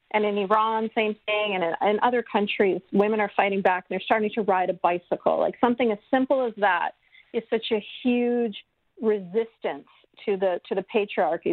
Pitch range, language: 205-255 Hz, English